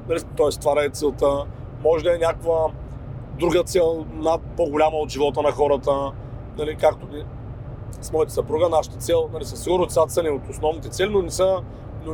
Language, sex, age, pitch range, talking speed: Bulgarian, male, 40-59, 120-185 Hz, 165 wpm